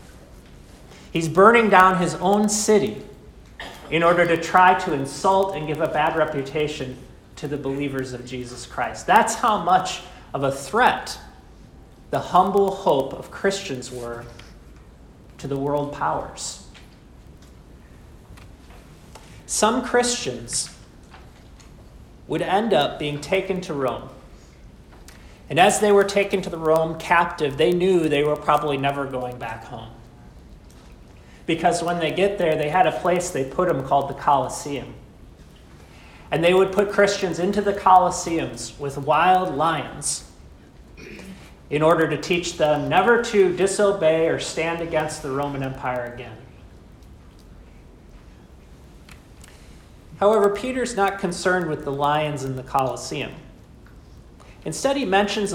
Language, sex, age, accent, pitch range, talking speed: English, male, 40-59, American, 125-185 Hz, 130 wpm